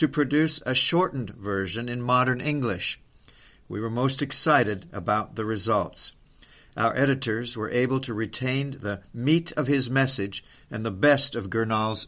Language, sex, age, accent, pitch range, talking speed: English, male, 50-69, American, 110-140 Hz, 155 wpm